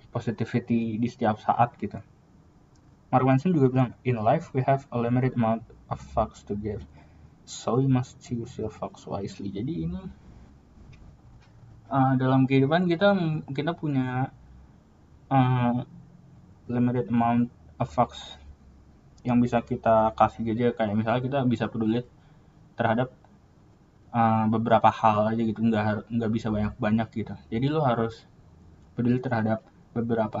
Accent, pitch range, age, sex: native, 105-130 Hz, 20-39, male